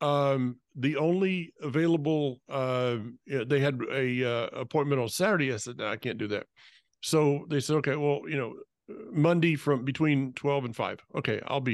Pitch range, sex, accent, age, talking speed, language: 135-160 Hz, male, American, 50-69, 180 wpm, English